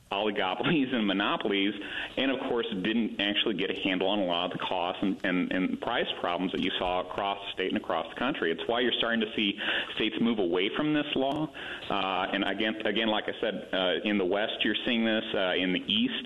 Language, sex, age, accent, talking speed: English, male, 40-59, American, 230 wpm